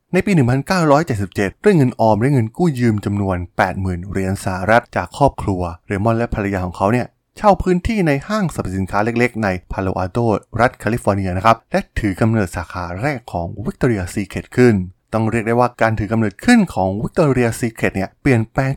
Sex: male